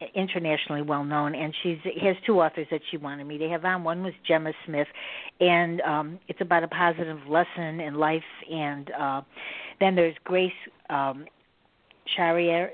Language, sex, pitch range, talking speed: English, female, 155-175 Hz, 160 wpm